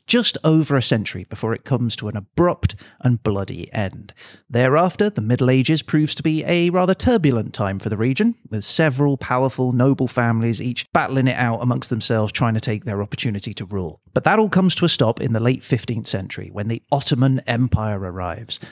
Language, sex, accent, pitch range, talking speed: English, male, British, 110-150 Hz, 200 wpm